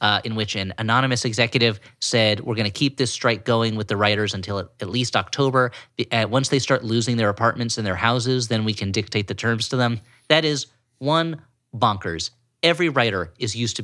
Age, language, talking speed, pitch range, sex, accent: 30-49, English, 205 wpm, 110-135 Hz, male, American